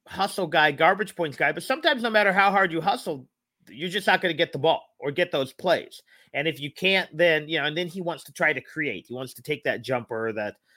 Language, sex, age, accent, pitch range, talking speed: English, male, 40-59, American, 135-175 Hz, 260 wpm